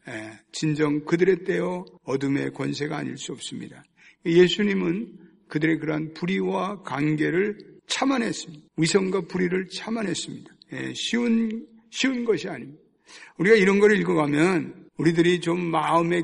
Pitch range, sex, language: 155-210 Hz, male, Korean